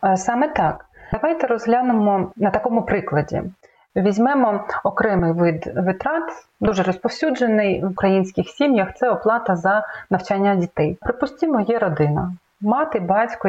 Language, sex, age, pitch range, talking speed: Ukrainian, female, 30-49, 180-225 Hz, 115 wpm